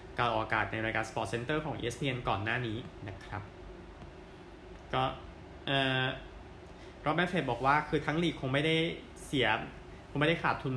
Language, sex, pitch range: Thai, male, 115-140 Hz